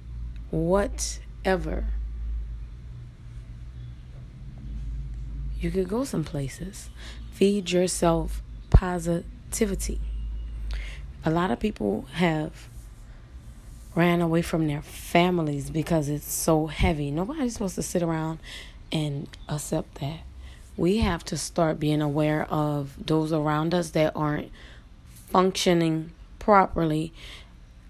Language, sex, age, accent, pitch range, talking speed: English, female, 20-39, American, 140-195 Hz, 95 wpm